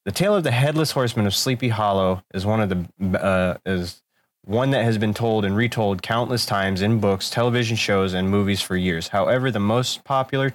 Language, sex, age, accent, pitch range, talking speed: English, male, 20-39, American, 95-125 Hz, 205 wpm